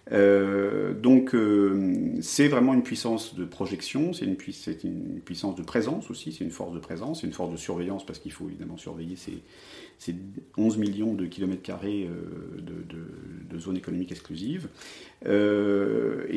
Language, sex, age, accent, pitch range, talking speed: French, male, 40-59, French, 85-110 Hz, 170 wpm